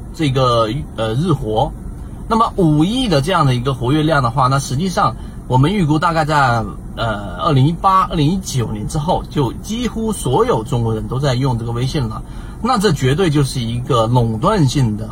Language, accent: Chinese, native